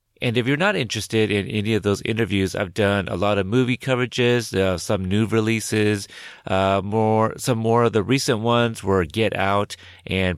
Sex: male